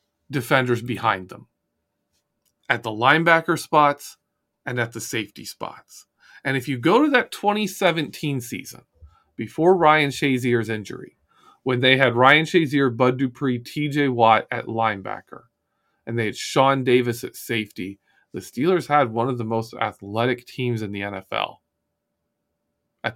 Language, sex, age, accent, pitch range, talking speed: English, male, 40-59, American, 120-165 Hz, 145 wpm